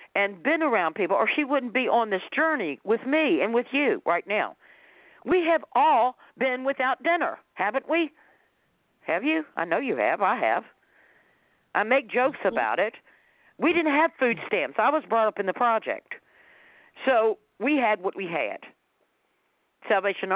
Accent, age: American, 50-69